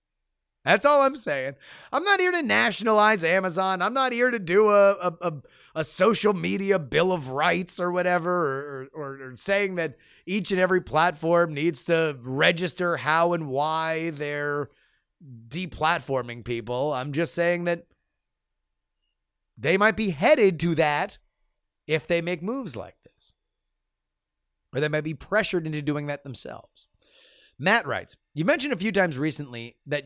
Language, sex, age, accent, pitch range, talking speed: English, male, 30-49, American, 125-180 Hz, 155 wpm